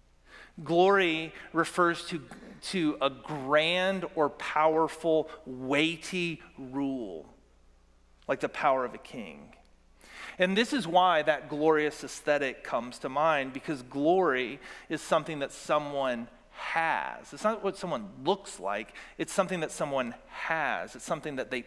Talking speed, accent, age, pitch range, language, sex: 135 wpm, American, 40-59, 130-170 Hz, English, male